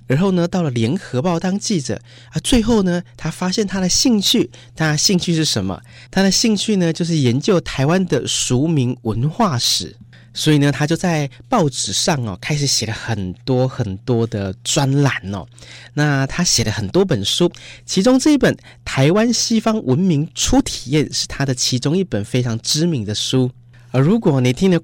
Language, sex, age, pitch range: Chinese, male, 30-49, 120-175 Hz